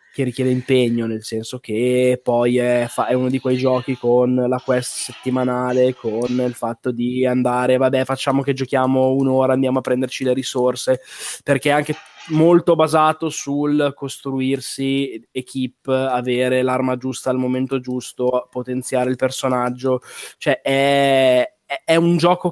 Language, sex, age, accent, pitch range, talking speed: Italian, male, 20-39, native, 125-140 Hz, 145 wpm